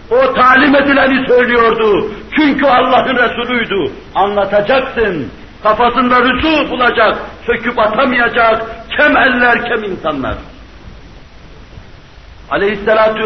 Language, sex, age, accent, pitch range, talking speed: Turkish, male, 60-79, native, 175-235 Hz, 80 wpm